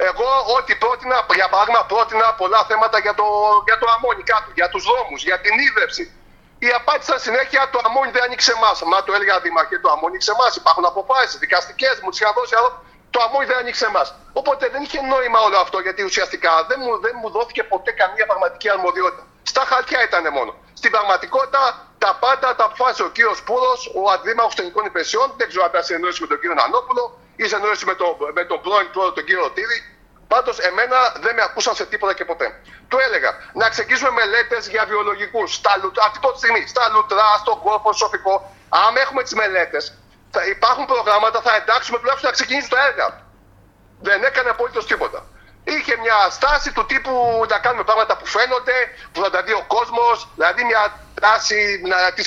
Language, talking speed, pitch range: Greek, 185 wpm, 210-265 Hz